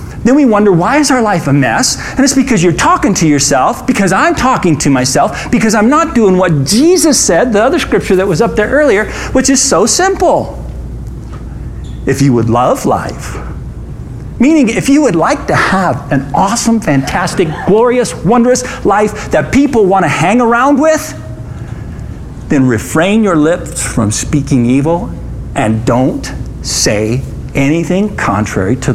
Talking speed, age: 160 wpm, 50-69